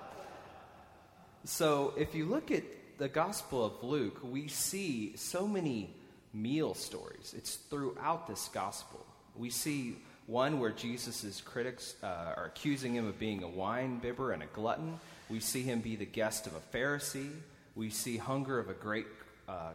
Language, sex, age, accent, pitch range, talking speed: English, male, 30-49, American, 95-130 Hz, 160 wpm